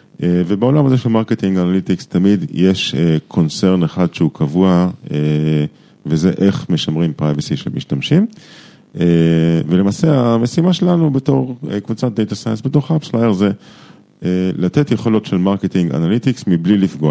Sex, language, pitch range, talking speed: male, Hebrew, 75-105 Hz, 140 wpm